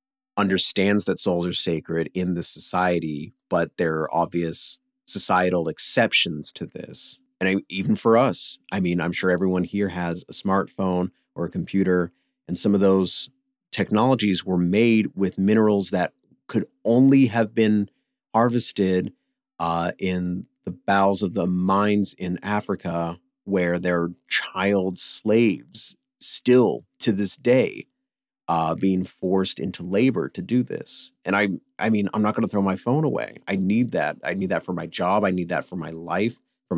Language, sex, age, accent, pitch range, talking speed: English, male, 30-49, American, 90-115 Hz, 165 wpm